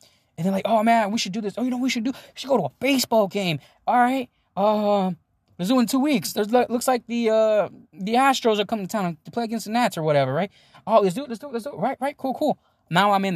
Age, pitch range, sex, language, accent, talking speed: 10-29, 140-215 Hz, male, English, American, 290 wpm